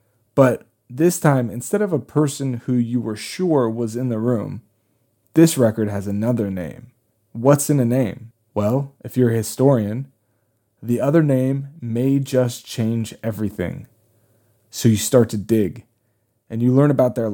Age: 20-39